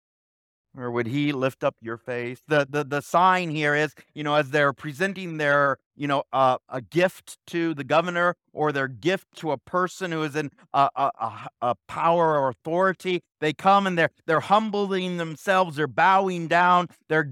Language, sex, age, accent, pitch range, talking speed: English, male, 50-69, American, 125-180 Hz, 185 wpm